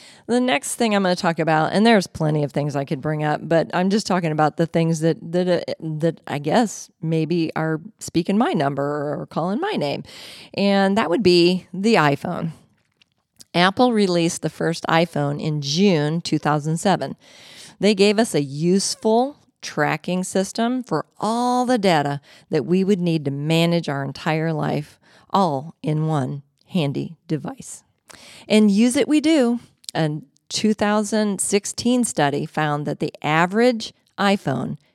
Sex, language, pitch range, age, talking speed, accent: female, English, 150-200 Hz, 40-59, 155 wpm, American